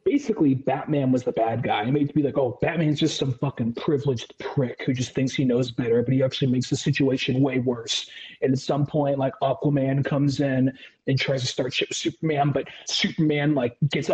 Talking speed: 210 wpm